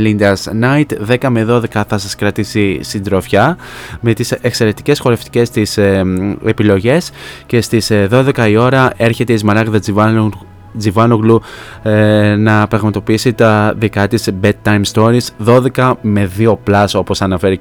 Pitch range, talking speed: 100-115 Hz, 135 wpm